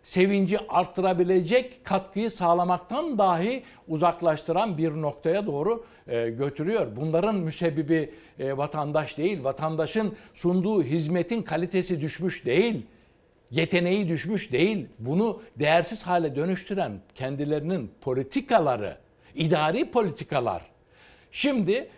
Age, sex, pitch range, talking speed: 60-79, male, 145-195 Hz, 95 wpm